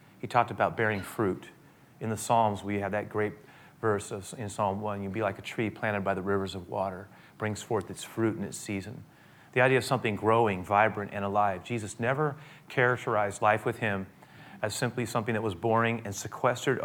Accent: American